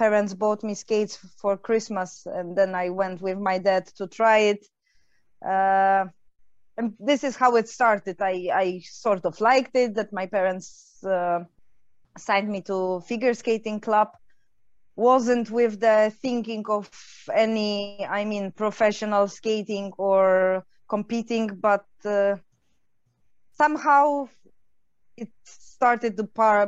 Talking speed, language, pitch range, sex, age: 130 wpm, English, 195-235 Hz, female, 20-39